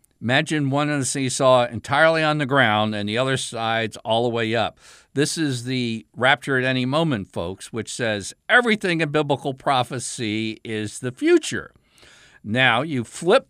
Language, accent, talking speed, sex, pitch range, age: English, American, 165 wpm, male, 120-155 Hz, 50-69